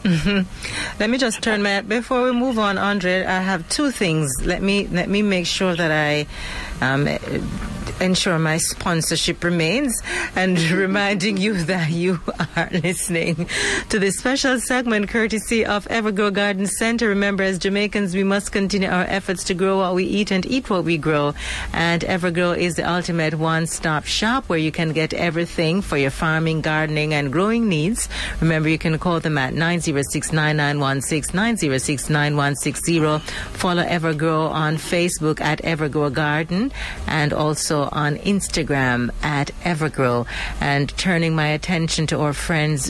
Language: English